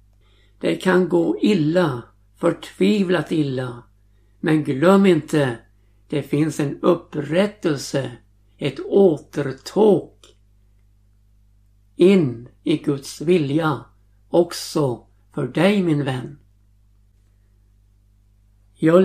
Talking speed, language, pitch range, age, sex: 80 wpm, Swedish, 100-170 Hz, 60-79, male